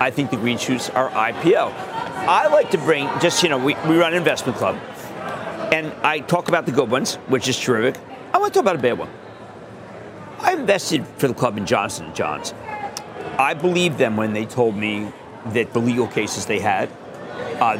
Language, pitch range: English, 125-165 Hz